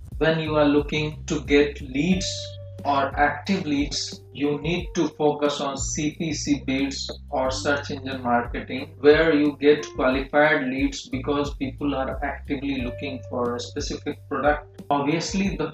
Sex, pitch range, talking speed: male, 130-155 Hz, 140 wpm